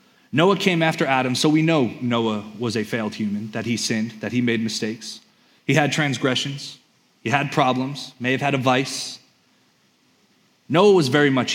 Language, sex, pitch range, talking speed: English, male, 125-190 Hz, 175 wpm